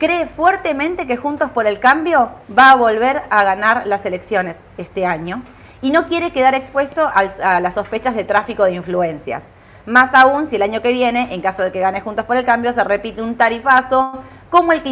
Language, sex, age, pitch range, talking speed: Spanish, female, 30-49, 185-255 Hz, 205 wpm